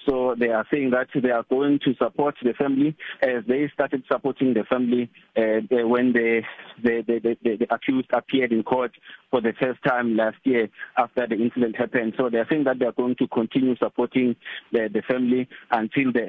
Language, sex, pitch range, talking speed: English, male, 115-130 Hz, 190 wpm